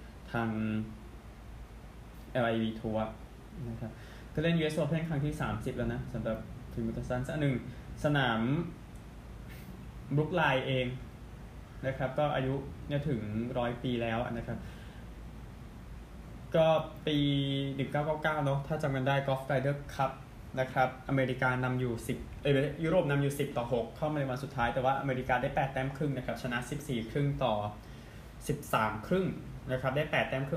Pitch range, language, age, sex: 115-140 Hz, Thai, 20-39, male